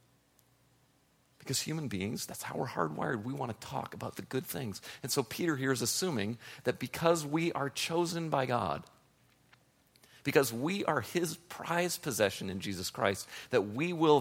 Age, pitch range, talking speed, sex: 40-59, 115-145 Hz, 170 wpm, male